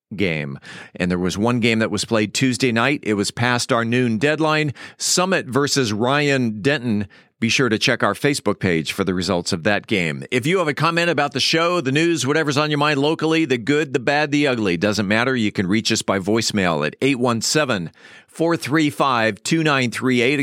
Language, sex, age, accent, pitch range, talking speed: English, male, 40-59, American, 110-145 Hz, 190 wpm